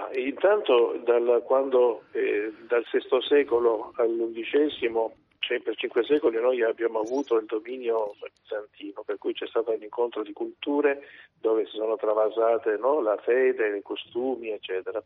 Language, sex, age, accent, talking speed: Italian, male, 50-69, native, 145 wpm